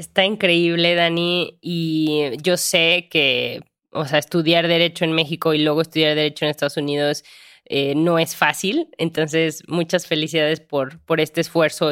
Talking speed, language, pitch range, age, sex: 155 wpm, Spanish, 160-190 Hz, 20-39, female